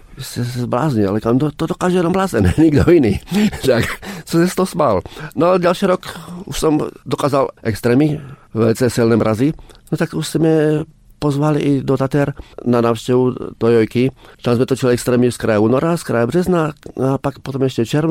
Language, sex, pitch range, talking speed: Czech, male, 110-145 Hz, 185 wpm